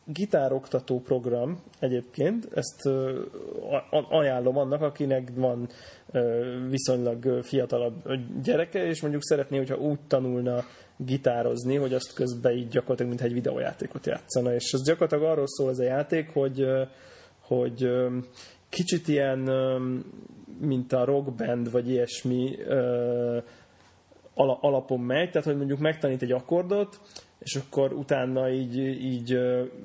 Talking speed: 115 wpm